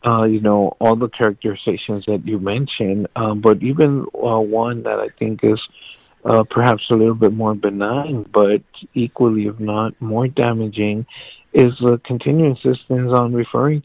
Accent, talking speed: American, 165 wpm